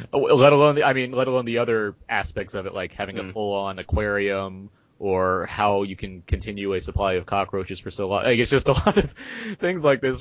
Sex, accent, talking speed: male, American, 225 wpm